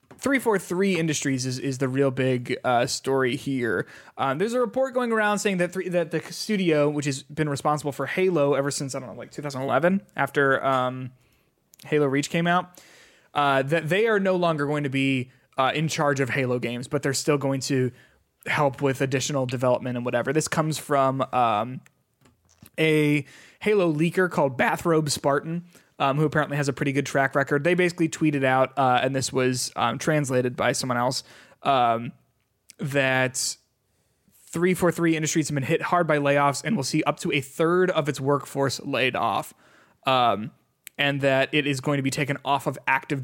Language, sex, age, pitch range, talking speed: English, male, 20-39, 130-160 Hz, 185 wpm